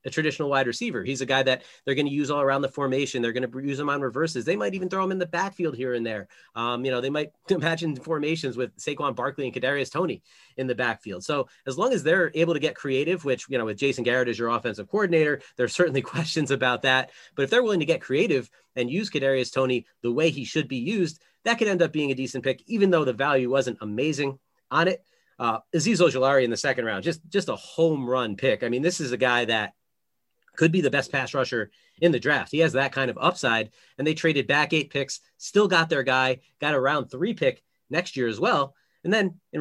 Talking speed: 250 wpm